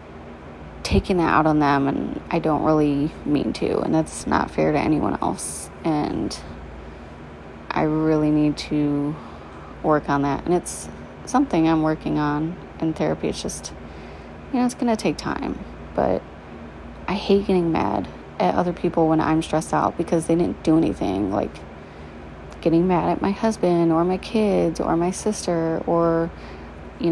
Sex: female